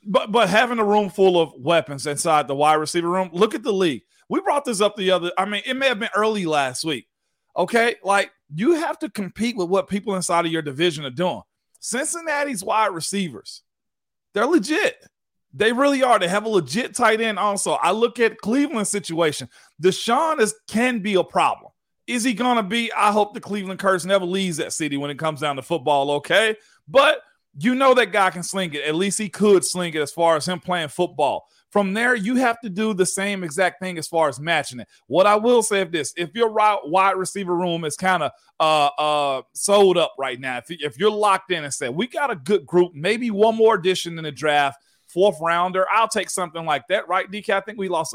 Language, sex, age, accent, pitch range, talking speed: English, male, 40-59, American, 170-220 Hz, 225 wpm